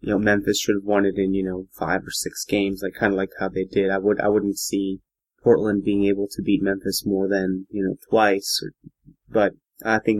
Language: English